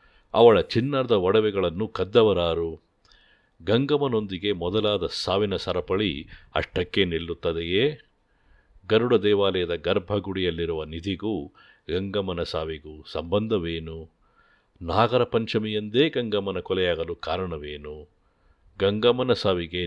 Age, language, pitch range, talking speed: 50-69, Kannada, 85-110 Hz, 70 wpm